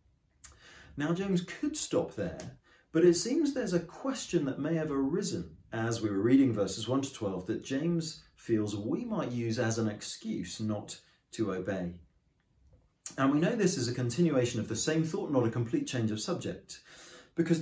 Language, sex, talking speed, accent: English, male, 180 wpm, British